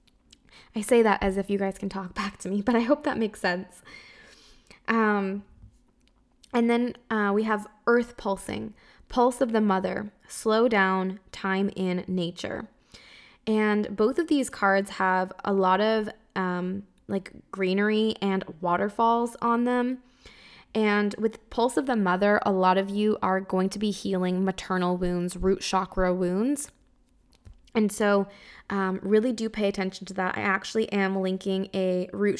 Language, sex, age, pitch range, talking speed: English, female, 10-29, 190-220 Hz, 160 wpm